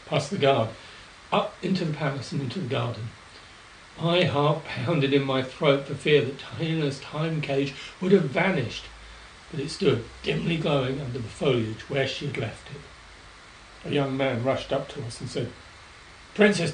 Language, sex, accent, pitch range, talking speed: English, male, British, 115-145 Hz, 175 wpm